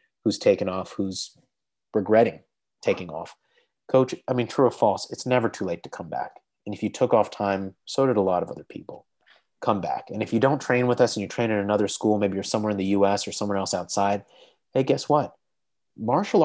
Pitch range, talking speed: 100-130 Hz, 225 wpm